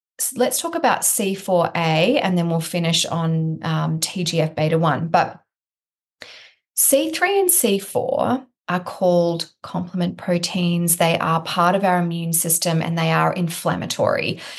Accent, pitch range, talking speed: Australian, 165-185 Hz, 135 wpm